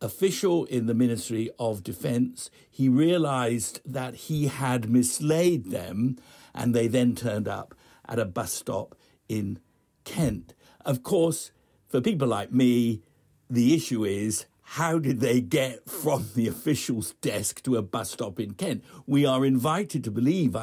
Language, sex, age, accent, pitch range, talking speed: English, male, 60-79, British, 110-135 Hz, 150 wpm